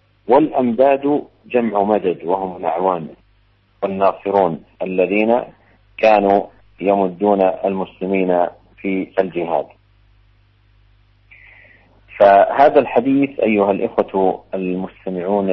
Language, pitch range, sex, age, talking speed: Indonesian, 95-105 Hz, male, 50-69, 65 wpm